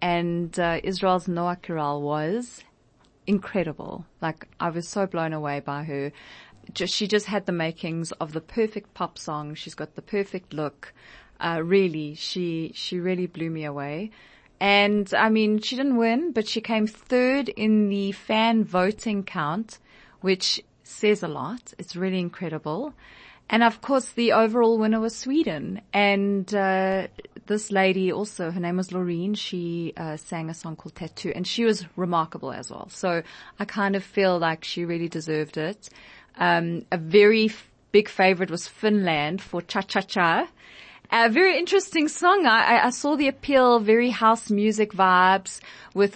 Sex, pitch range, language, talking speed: female, 170-215 Hz, English, 160 wpm